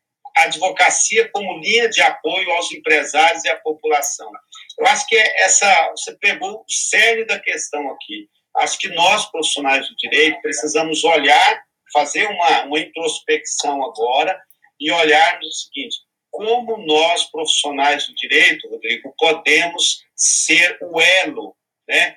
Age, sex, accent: 50-69, male, Brazilian